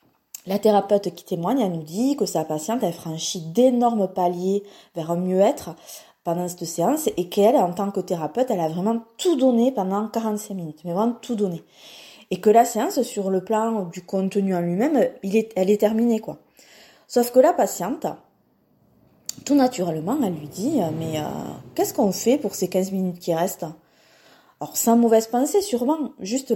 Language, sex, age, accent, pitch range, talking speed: French, female, 20-39, French, 175-245 Hz, 180 wpm